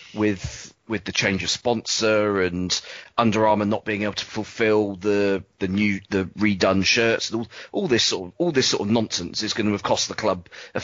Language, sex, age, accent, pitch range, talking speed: English, male, 30-49, British, 95-110 Hz, 215 wpm